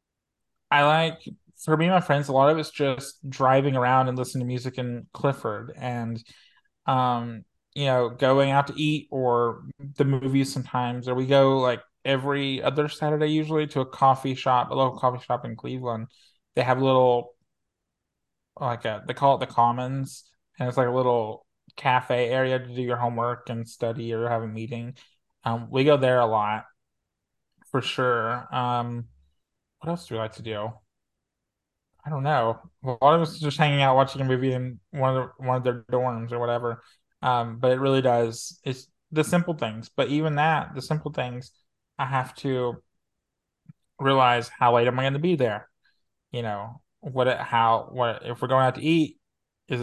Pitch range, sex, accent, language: 120-140 Hz, male, American, English